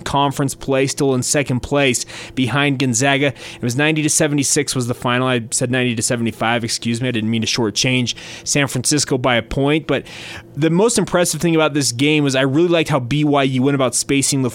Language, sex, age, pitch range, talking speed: English, male, 20-39, 125-155 Hz, 215 wpm